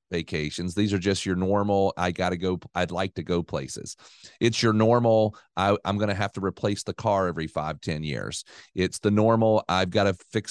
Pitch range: 90-110 Hz